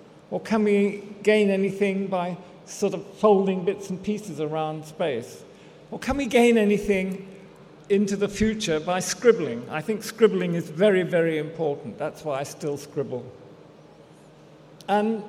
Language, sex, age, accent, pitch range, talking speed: English, male, 50-69, British, 160-205 Hz, 145 wpm